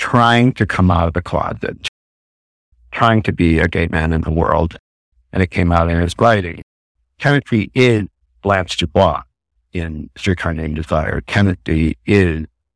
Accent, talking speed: American, 155 wpm